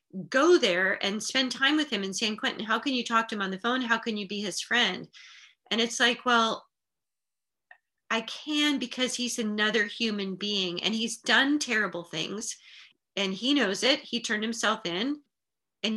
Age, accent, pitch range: 40-59, American, 195-250 Hz